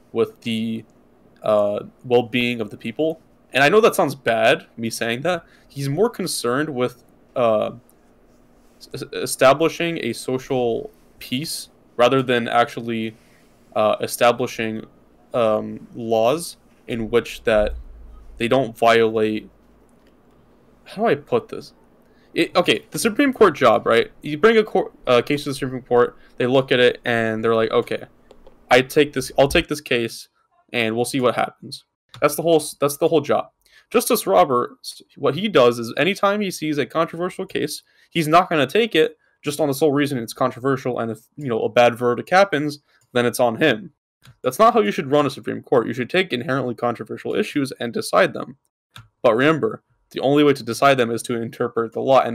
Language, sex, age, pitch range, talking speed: English, male, 10-29, 115-155 Hz, 175 wpm